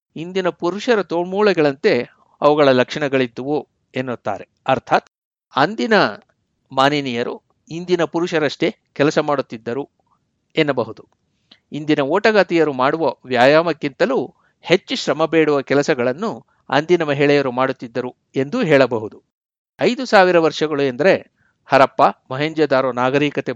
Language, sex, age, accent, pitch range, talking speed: Kannada, male, 60-79, native, 130-165 Hz, 80 wpm